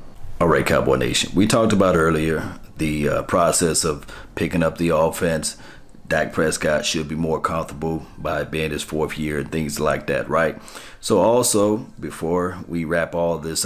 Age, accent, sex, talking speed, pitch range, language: 40-59, American, male, 170 wpm, 80-95 Hz, English